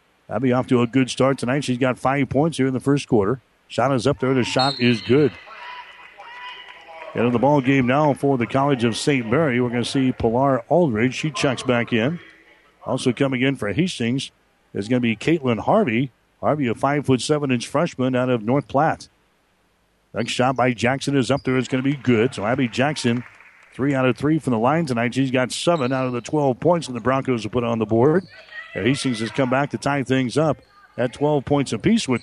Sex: male